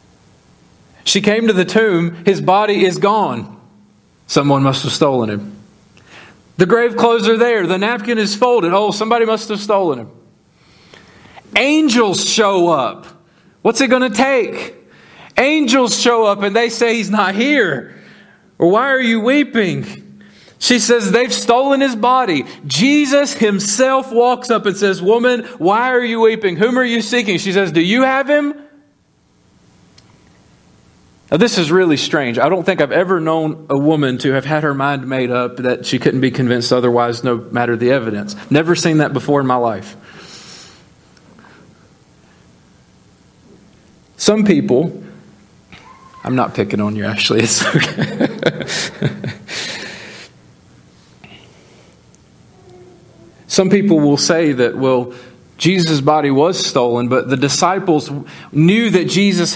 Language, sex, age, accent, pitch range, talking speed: English, male, 40-59, American, 140-235 Hz, 140 wpm